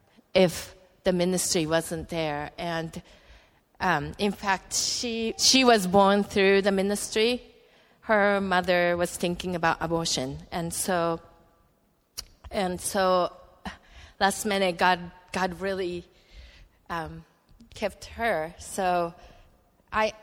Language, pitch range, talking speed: English, 165-195 Hz, 105 wpm